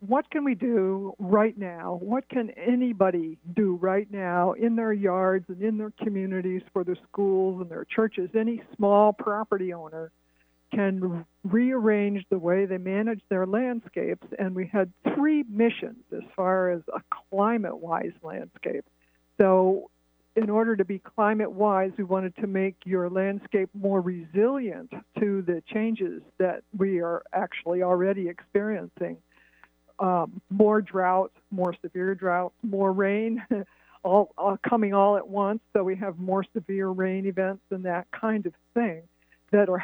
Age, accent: 60-79, American